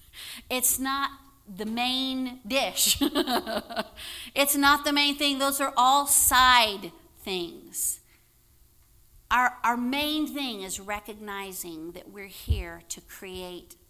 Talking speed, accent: 110 wpm, American